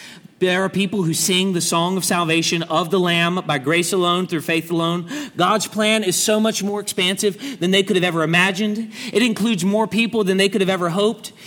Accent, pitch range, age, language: American, 145-205 Hz, 40-59, English